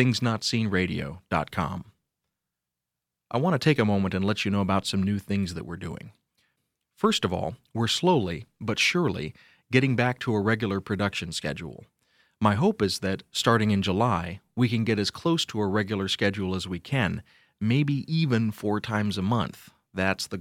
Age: 40-59